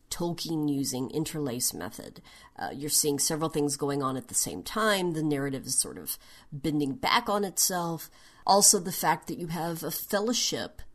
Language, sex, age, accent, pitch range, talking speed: English, female, 40-59, American, 150-205 Hz, 175 wpm